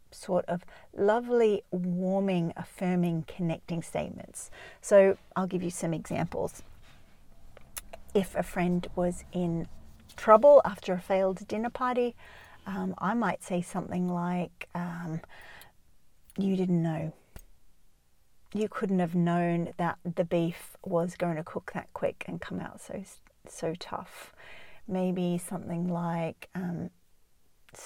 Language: English